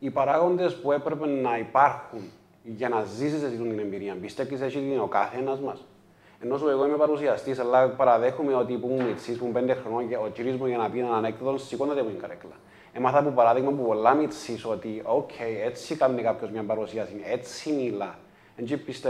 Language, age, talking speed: Greek, 30-49, 40 wpm